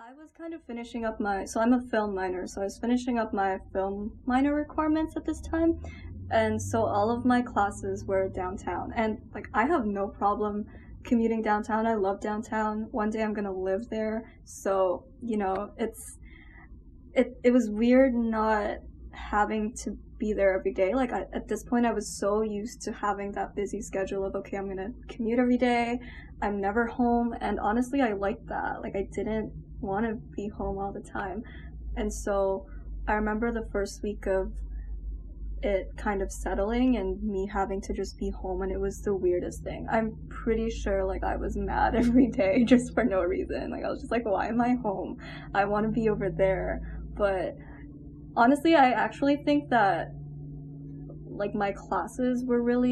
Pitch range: 195-235 Hz